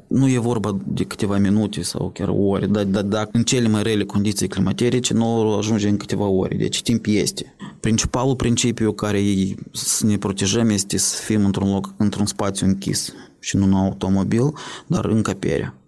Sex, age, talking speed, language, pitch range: male, 20-39, 180 wpm, Romanian, 95-110 Hz